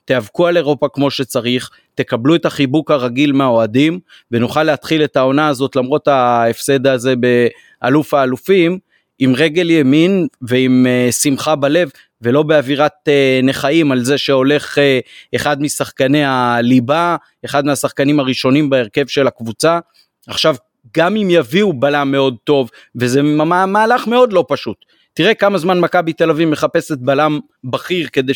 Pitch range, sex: 130-160 Hz, male